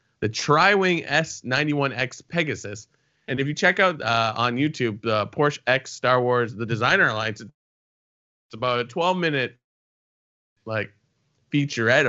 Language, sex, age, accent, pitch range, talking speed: English, male, 20-39, American, 120-155 Hz, 135 wpm